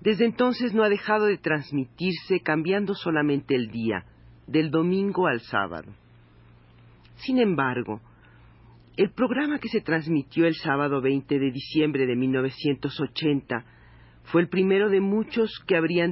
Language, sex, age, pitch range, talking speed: Spanish, male, 40-59, 120-165 Hz, 135 wpm